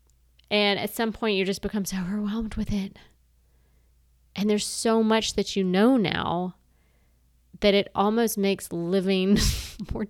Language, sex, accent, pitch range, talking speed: English, female, American, 160-205 Hz, 150 wpm